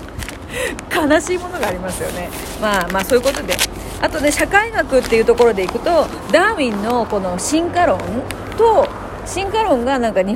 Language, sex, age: Japanese, female, 40-59